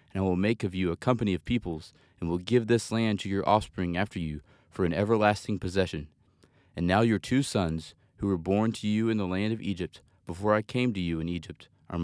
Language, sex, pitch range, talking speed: English, male, 85-110 Hz, 235 wpm